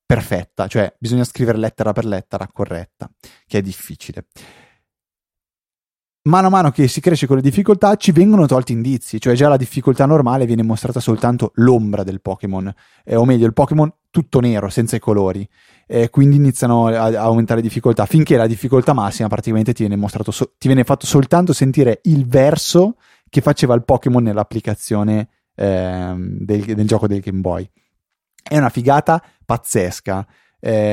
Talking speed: 165 wpm